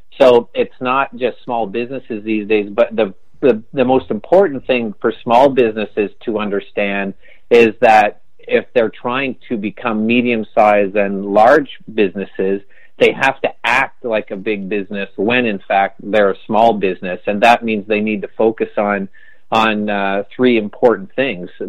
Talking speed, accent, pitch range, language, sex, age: 165 wpm, American, 100-115 Hz, English, male, 40-59